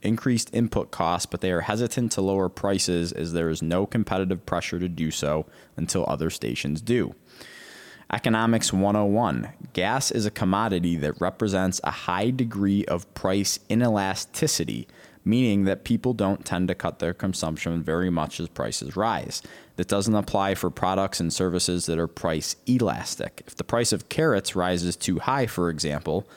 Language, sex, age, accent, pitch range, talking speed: English, male, 20-39, American, 85-105 Hz, 165 wpm